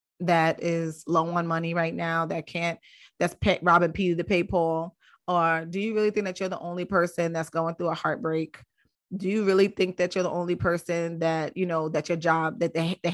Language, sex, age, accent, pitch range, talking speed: English, female, 30-49, American, 165-195 Hz, 210 wpm